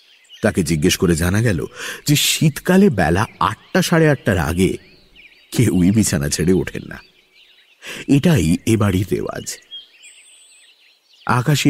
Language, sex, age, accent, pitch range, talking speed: English, male, 50-69, Indian, 95-150 Hz, 105 wpm